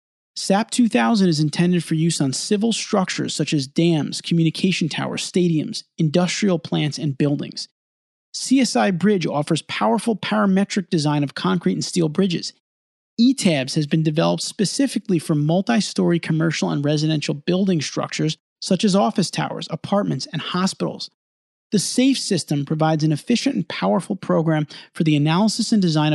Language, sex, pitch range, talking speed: English, male, 150-200 Hz, 140 wpm